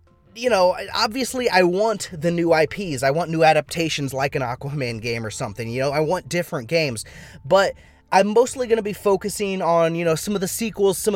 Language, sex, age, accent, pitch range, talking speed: English, male, 20-39, American, 135-185 Hz, 210 wpm